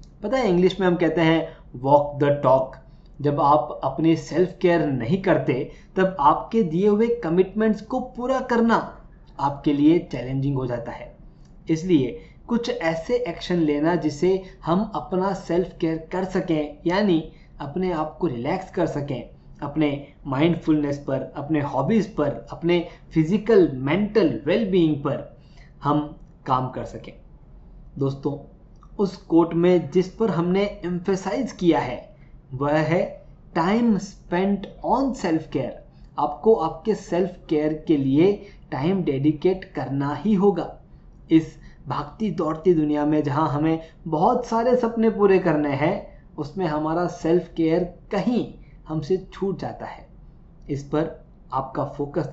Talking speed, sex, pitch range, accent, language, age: 135 wpm, male, 145-185 Hz, native, Hindi, 20-39